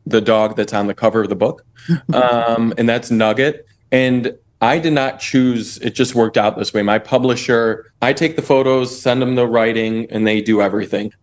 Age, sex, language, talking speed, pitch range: 20-39, male, English, 205 wpm, 105-125 Hz